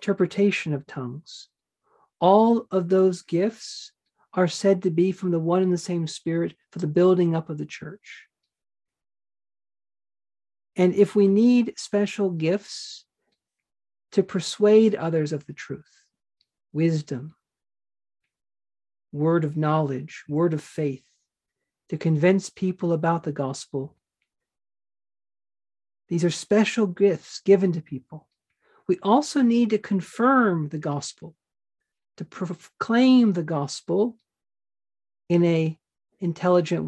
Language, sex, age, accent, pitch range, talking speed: English, male, 40-59, American, 155-195 Hz, 115 wpm